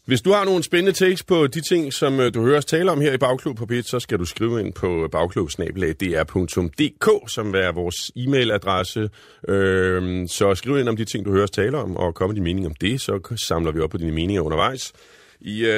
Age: 30-49